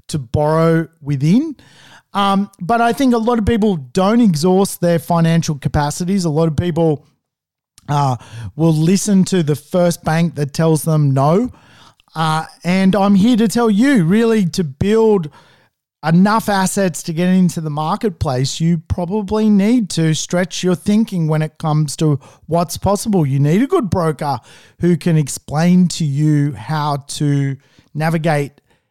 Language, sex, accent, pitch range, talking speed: English, male, Australian, 150-195 Hz, 155 wpm